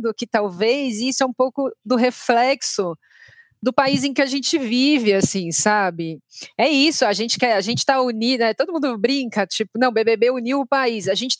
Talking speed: 200 wpm